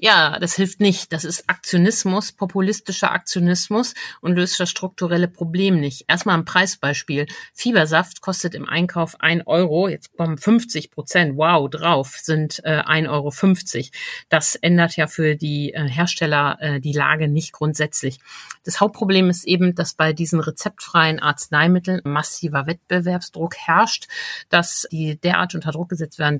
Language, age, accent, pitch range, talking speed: German, 50-69, German, 145-180 Hz, 140 wpm